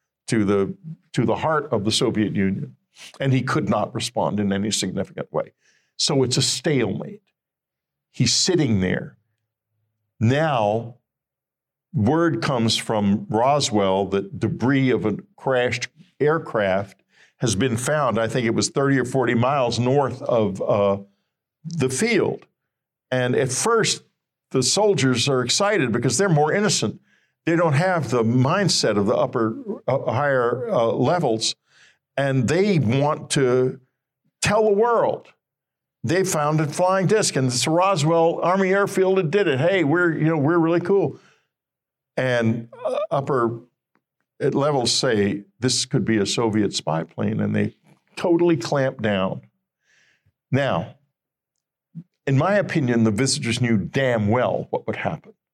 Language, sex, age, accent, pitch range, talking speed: English, male, 50-69, American, 110-160 Hz, 140 wpm